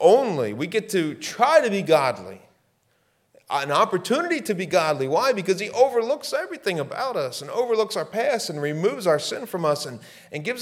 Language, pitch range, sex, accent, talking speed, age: English, 125-185 Hz, male, American, 185 wpm, 40-59